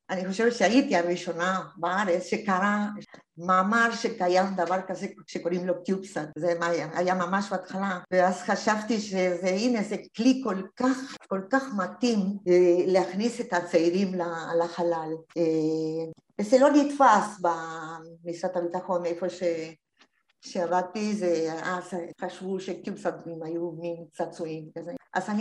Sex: female